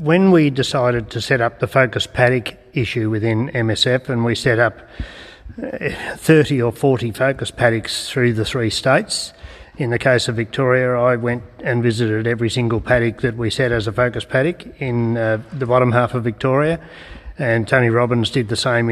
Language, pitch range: English, 115-130 Hz